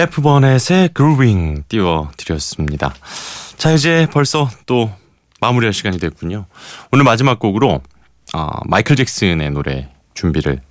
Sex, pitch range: male, 85-130 Hz